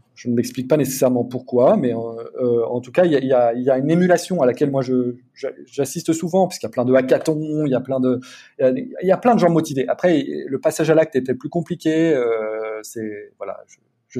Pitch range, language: 120-160 Hz, French